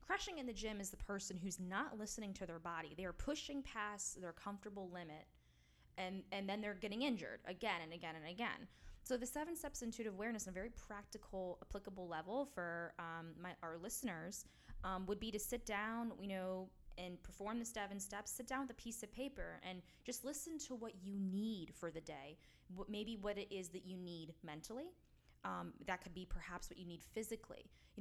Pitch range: 175-225 Hz